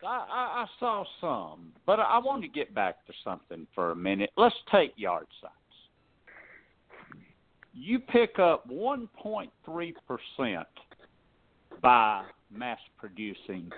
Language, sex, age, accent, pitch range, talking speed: English, male, 60-79, American, 130-215 Hz, 110 wpm